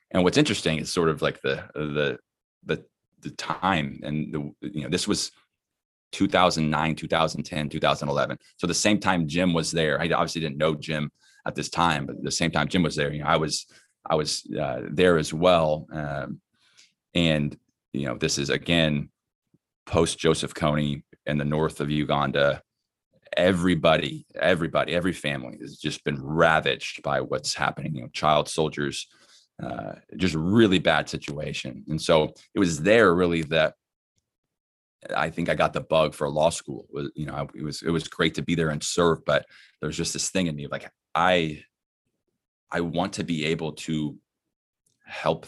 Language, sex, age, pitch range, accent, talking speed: English, male, 20-39, 75-85 Hz, American, 175 wpm